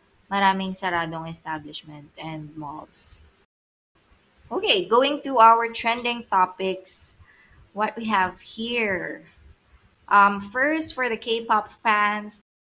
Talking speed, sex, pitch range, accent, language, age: 105 wpm, female, 185-225 Hz, native, Filipino, 20-39